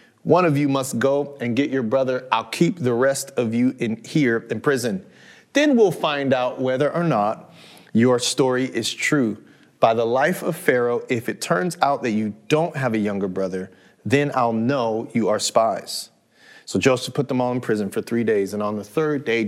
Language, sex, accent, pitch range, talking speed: English, male, American, 115-160 Hz, 205 wpm